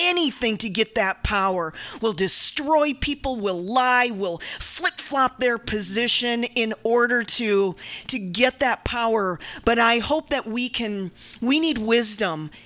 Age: 40-59